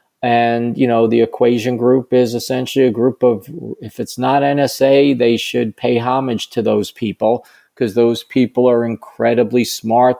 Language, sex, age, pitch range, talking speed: English, male, 40-59, 115-130 Hz, 165 wpm